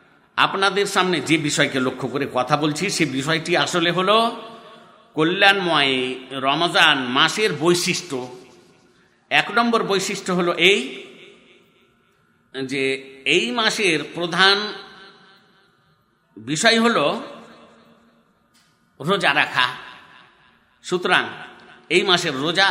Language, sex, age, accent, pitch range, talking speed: Bengali, male, 50-69, native, 135-185 Hz, 85 wpm